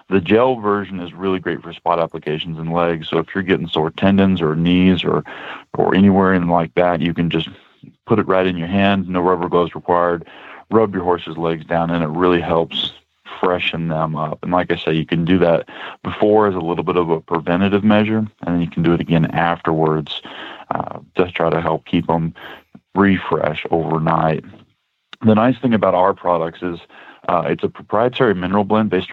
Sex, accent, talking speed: male, American, 200 wpm